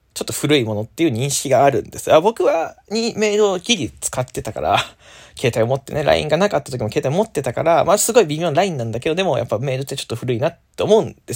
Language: Japanese